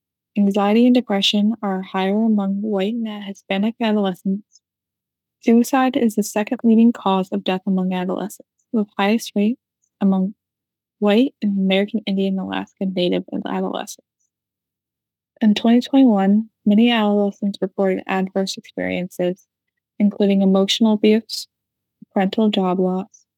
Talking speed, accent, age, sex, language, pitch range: 115 wpm, American, 20-39, female, Polish, 190-215 Hz